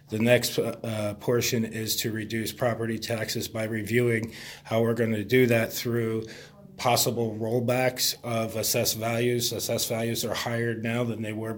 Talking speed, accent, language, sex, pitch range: 160 wpm, American, English, male, 115-130 Hz